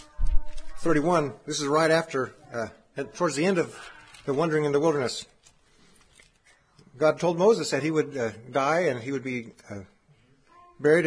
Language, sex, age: English, male, 50-69